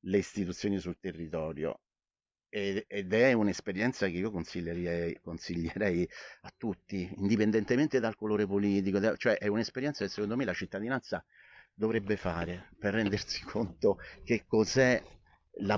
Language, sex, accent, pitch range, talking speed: Italian, male, native, 95-120 Hz, 125 wpm